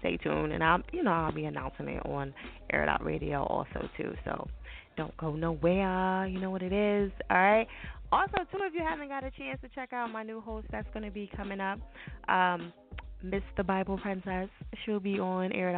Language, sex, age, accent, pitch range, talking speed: English, female, 20-39, American, 170-230 Hz, 210 wpm